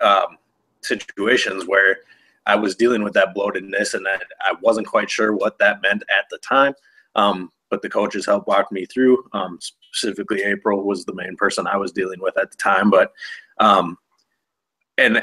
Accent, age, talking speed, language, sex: American, 30-49, 180 wpm, English, male